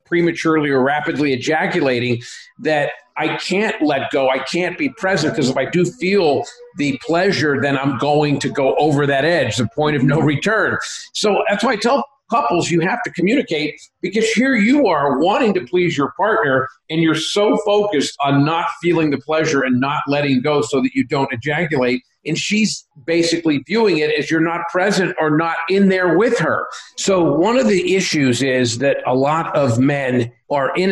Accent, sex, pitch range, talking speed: American, male, 130-175 Hz, 190 wpm